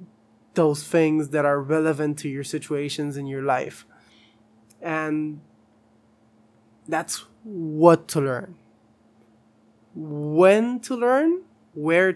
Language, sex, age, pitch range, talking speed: English, male, 20-39, 110-155 Hz, 100 wpm